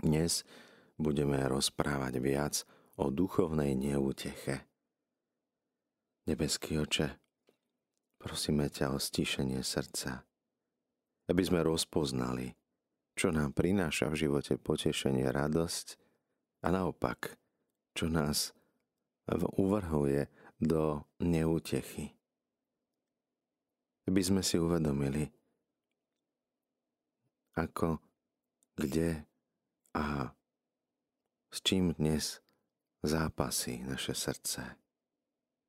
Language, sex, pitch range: Slovak, male, 70-90 Hz